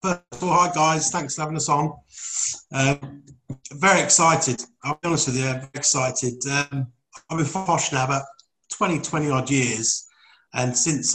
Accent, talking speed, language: British, 170 wpm, English